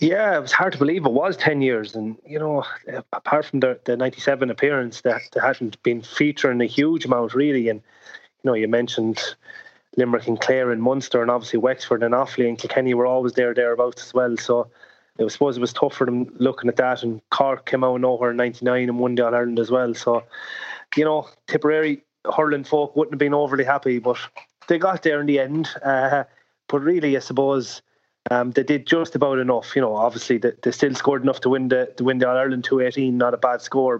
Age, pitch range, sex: 30-49, 120-145 Hz, male